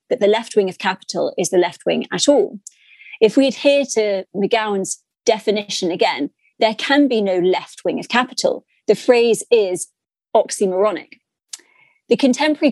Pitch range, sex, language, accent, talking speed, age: 195-255 Hz, female, English, British, 155 wpm, 30-49